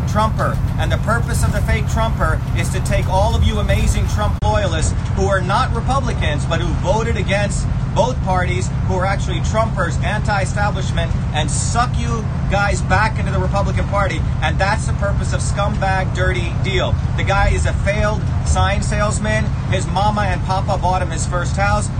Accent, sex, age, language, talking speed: American, male, 40-59, English, 175 wpm